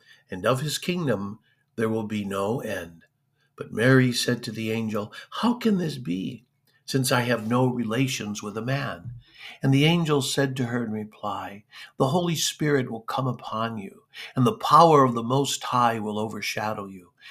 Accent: American